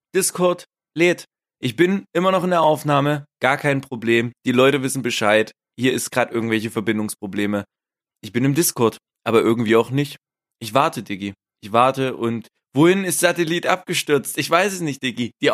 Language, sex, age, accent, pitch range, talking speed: German, male, 20-39, German, 120-170 Hz, 175 wpm